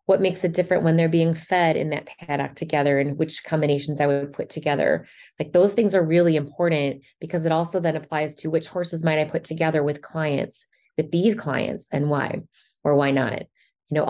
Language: English